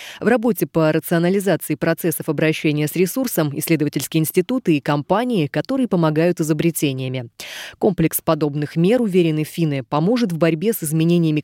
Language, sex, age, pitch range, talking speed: Russian, female, 20-39, 155-195 Hz, 130 wpm